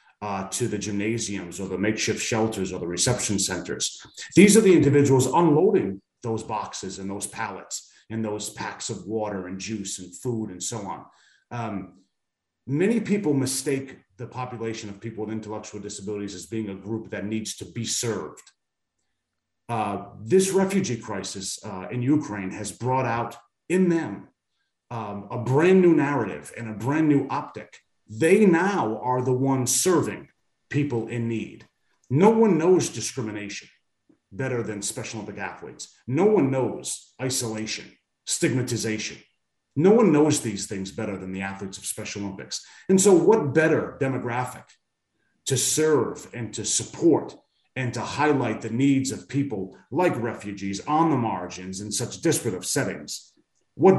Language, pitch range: English, 105-135 Hz